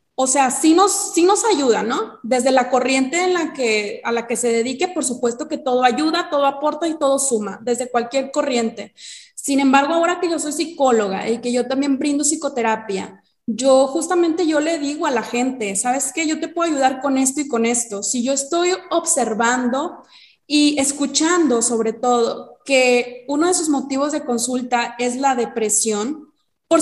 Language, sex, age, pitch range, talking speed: Spanish, female, 20-39, 240-305 Hz, 185 wpm